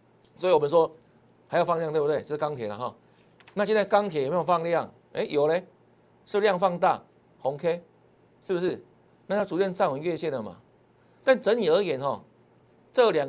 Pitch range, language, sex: 145-200 Hz, Chinese, male